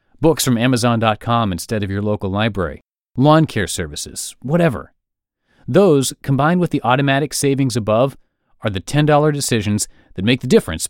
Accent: American